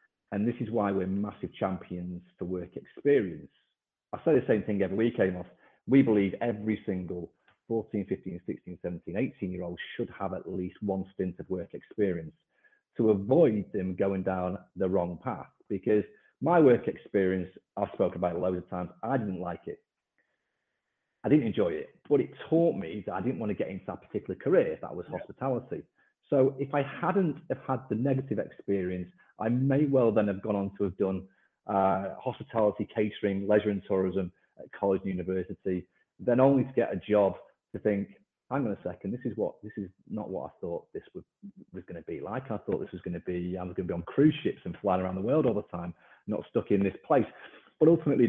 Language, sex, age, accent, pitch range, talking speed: English, male, 40-59, British, 95-130 Hz, 210 wpm